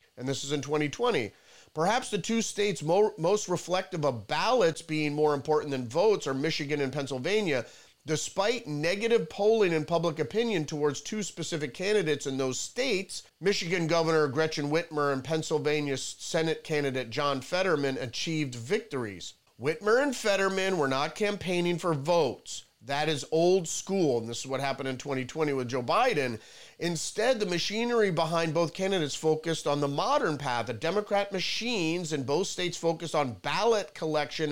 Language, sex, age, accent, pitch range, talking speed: English, male, 40-59, American, 140-185 Hz, 155 wpm